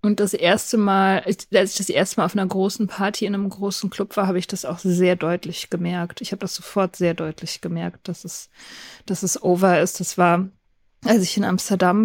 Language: German